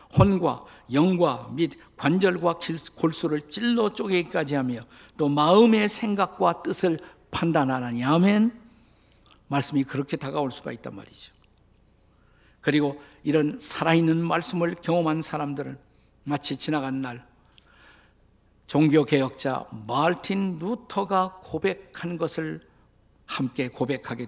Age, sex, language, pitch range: 50-69, male, Korean, 130-180 Hz